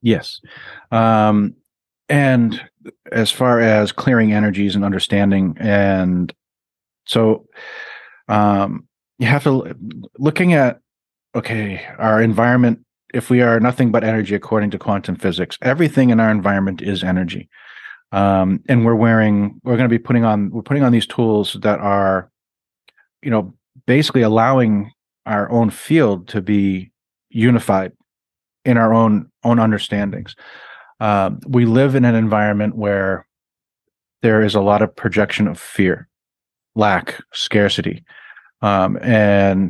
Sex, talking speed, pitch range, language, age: male, 135 wpm, 100-120 Hz, English, 40-59